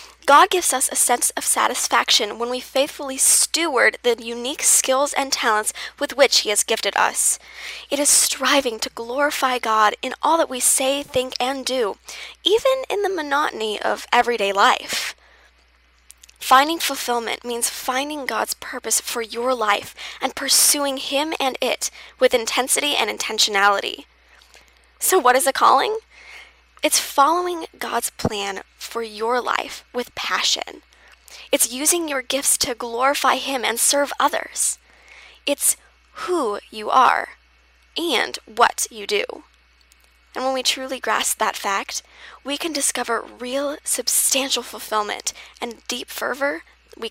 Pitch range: 235-285 Hz